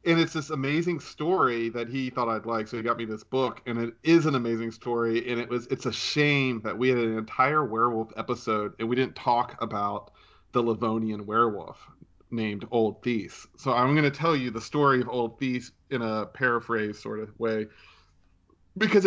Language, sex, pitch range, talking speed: English, male, 110-130 Hz, 200 wpm